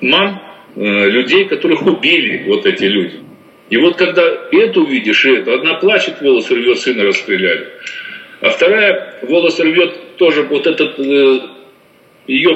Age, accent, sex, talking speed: 50-69, native, male, 145 wpm